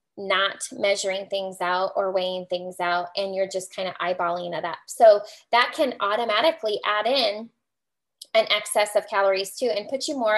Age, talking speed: 20-39, 180 wpm